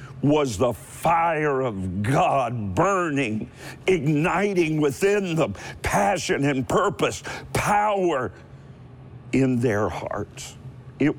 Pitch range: 125-155 Hz